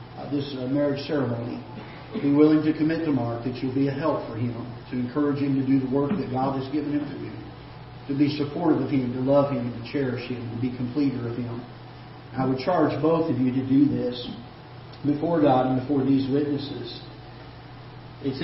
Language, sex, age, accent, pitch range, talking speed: English, male, 40-59, American, 125-145 Hz, 215 wpm